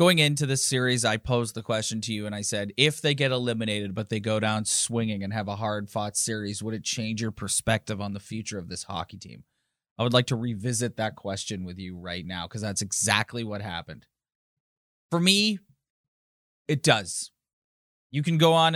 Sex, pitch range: male, 105-130 Hz